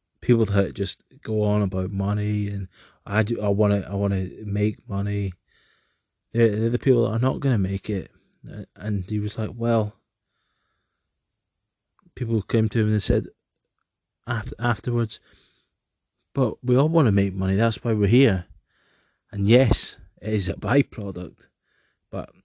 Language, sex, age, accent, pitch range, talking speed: English, male, 20-39, British, 100-115 Hz, 160 wpm